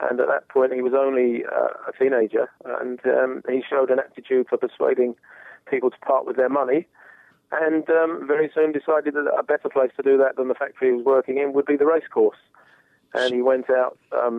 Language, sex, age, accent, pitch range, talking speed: English, male, 30-49, British, 120-140 Hz, 215 wpm